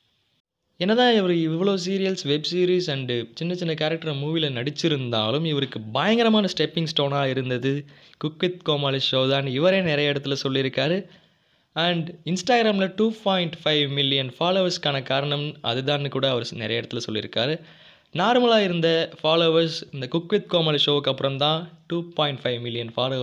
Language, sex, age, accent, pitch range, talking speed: Tamil, male, 20-39, native, 135-170 Hz, 130 wpm